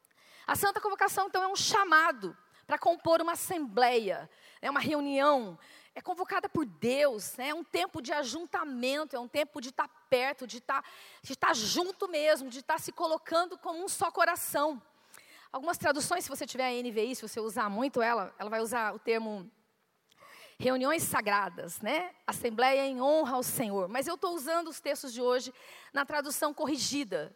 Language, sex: Portuguese, female